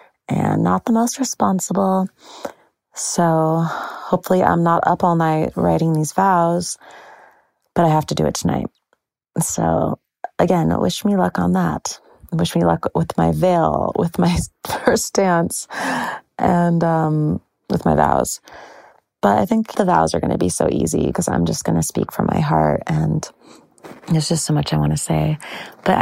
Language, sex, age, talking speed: English, female, 30-49, 170 wpm